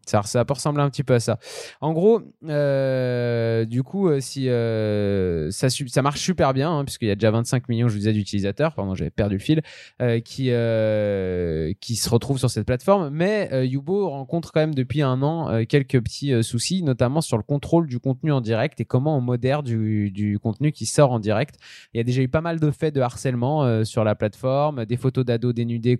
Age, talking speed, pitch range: 20-39, 225 wpm, 115-145 Hz